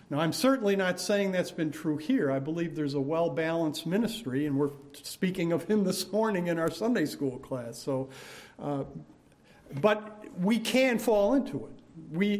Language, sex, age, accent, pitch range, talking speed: English, male, 50-69, American, 140-190 Hz, 175 wpm